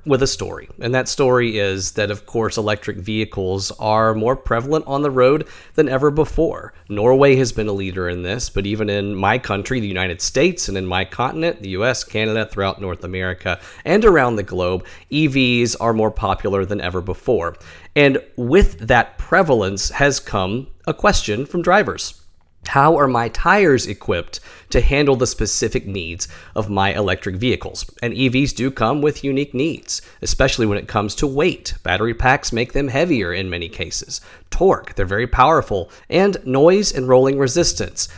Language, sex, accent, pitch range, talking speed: English, male, American, 95-130 Hz, 175 wpm